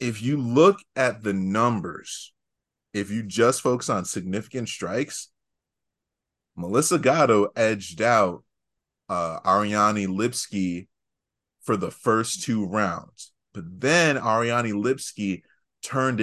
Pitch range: 100-120 Hz